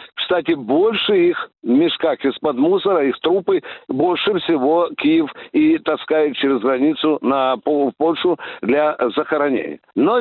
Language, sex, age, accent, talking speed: Russian, male, 60-79, native, 130 wpm